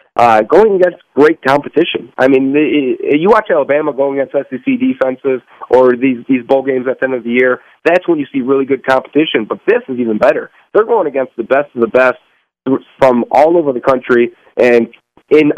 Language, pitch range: English, 130-150 Hz